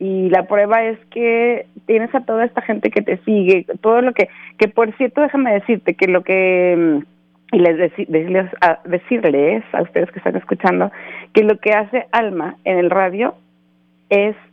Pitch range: 160-200 Hz